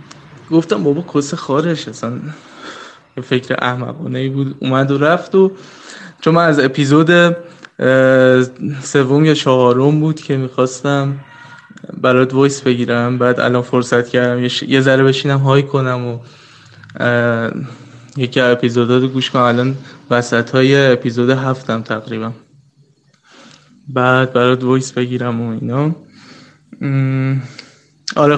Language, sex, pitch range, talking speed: Persian, male, 125-145 Hz, 115 wpm